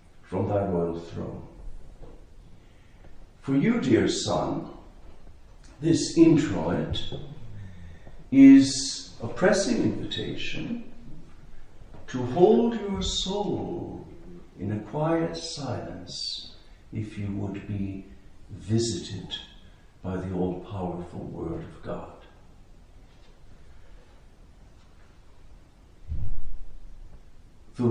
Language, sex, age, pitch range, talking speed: English, male, 60-79, 90-115 Hz, 75 wpm